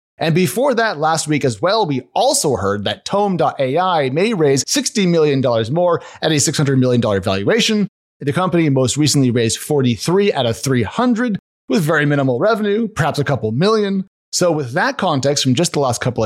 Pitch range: 135-185 Hz